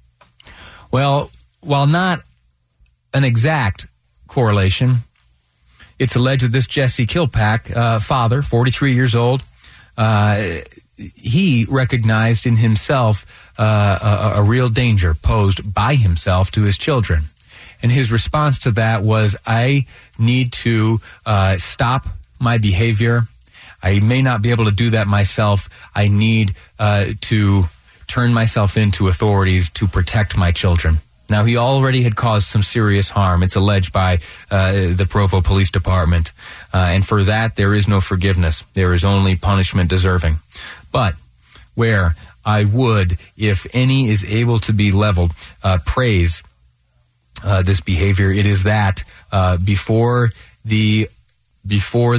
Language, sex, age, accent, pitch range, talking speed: English, male, 40-59, American, 90-115 Hz, 135 wpm